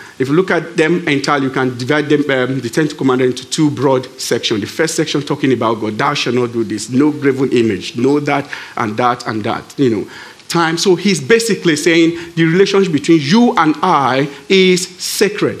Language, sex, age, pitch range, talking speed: English, male, 50-69, 140-185 Hz, 205 wpm